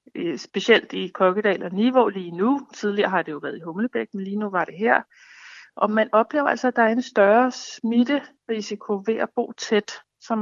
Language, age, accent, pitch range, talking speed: Danish, 60-79, native, 200-245 Hz, 200 wpm